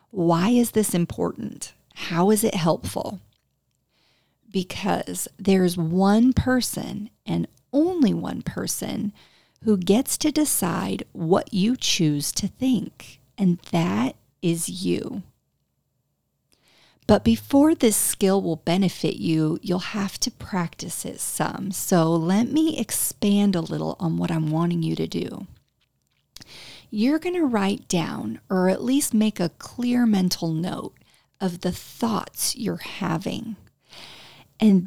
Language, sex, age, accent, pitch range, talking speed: English, female, 40-59, American, 175-230 Hz, 125 wpm